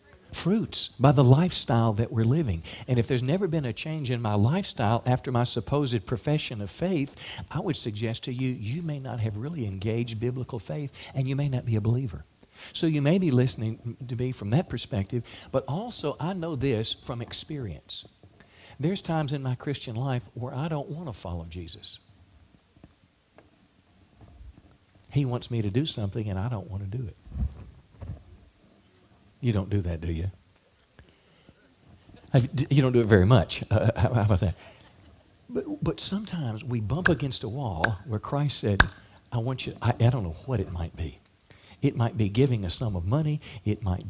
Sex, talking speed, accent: male, 180 wpm, American